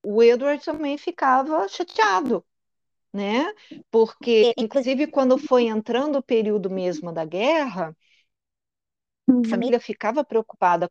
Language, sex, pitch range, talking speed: Portuguese, female, 195-265 Hz, 110 wpm